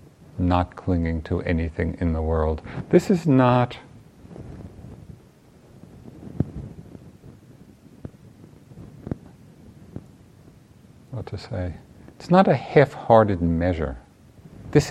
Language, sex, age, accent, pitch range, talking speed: English, male, 50-69, American, 85-120 Hz, 75 wpm